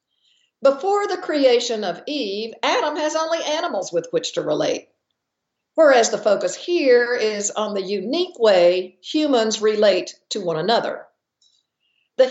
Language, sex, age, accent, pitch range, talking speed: English, female, 50-69, American, 220-310 Hz, 135 wpm